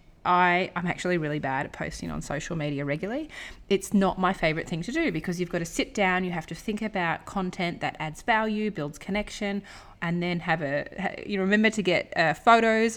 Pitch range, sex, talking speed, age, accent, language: 165-220 Hz, female, 205 wpm, 30-49, Australian, English